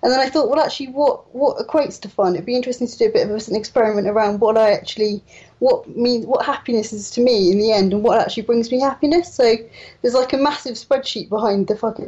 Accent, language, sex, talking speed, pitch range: British, English, female, 250 wpm, 220-260 Hz